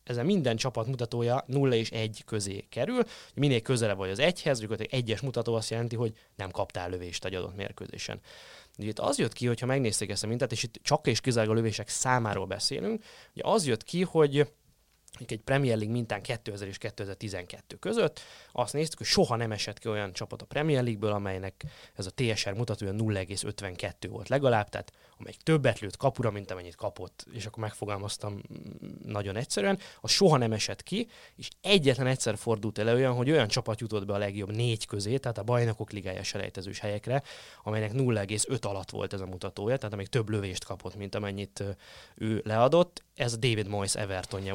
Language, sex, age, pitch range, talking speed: Hungarian, male, 20-39, 100-130 Hz, 185 wpm